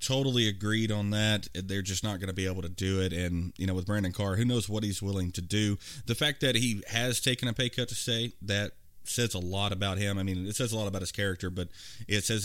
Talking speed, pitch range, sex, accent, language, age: 270 wpm, 95-120 Hz, male, American, English, 30-49